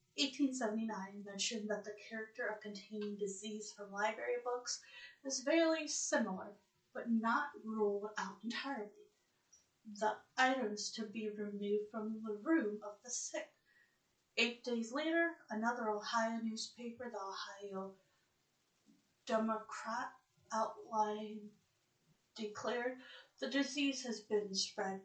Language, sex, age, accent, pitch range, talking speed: English, female, 30-49, American, 210-250 Hz, 115 wpm